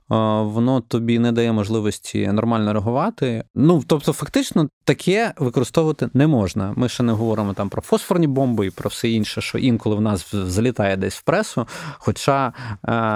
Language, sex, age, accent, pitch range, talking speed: Ukrainian, male, 20-39, native, 105-125 Hz, 165 wpm